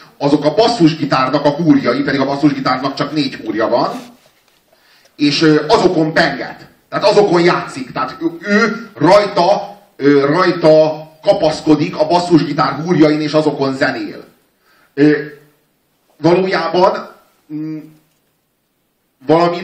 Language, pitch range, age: Hungarian, 140-165 Hz, 40-59